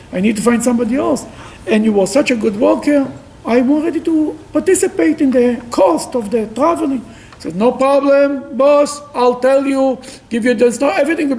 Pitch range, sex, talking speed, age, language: 175-270 Hz, male, 195 wpm, 50-69, English